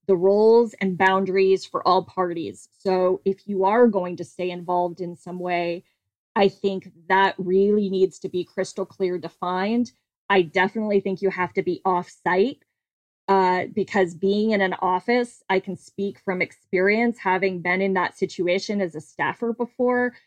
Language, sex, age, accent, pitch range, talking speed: English, female, 20-39, American, 180-205 Hz, 170 wpm